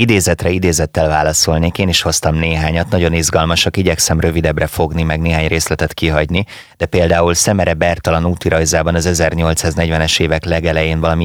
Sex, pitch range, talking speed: male, 80-95 Hz, 140 wpm